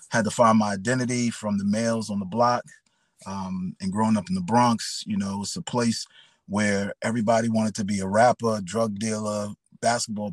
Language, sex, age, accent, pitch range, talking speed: English, male, 30-49, American, 110-175 Hz, 190 wpm